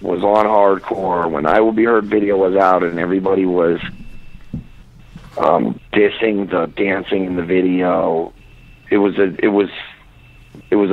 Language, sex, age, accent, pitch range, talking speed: English, male, 50-69, American, 100-120 Hz, 155 wpm